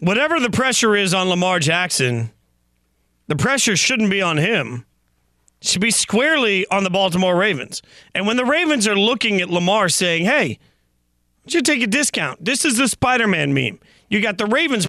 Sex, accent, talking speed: male, American, 190 wpm